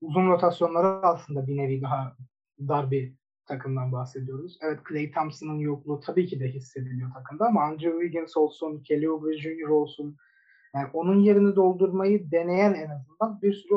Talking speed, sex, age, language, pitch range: 155 wpm, male, 30-49, Turkish, 145-185 Hz